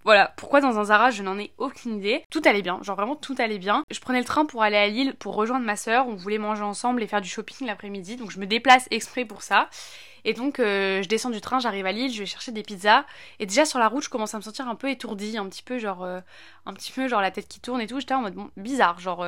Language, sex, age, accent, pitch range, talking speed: French, female, 20-39, French, 190-245 Hz, 295 wpm